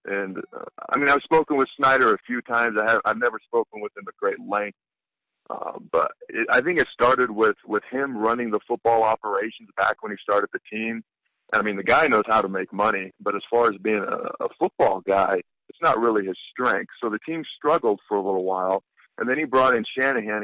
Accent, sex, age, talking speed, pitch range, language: American, male, 50-69, 230 wpm, 105-130 Hz, English